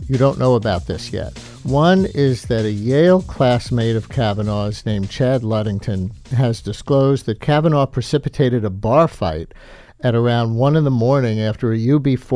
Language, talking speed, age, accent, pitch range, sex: English, 165 wpm, 50-69, American, 115-140 Hz, male